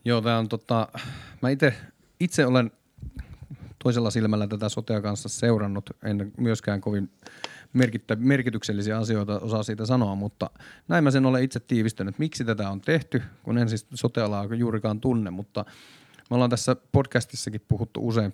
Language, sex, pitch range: Finnish, male, 105-125 Hz